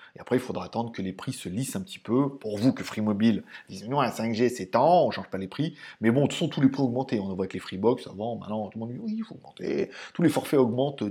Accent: French